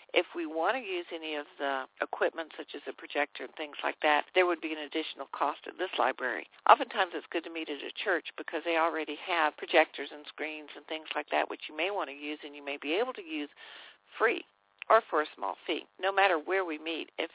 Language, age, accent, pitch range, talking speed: English, 60-79, American, 150-175 Hz, 240 wpm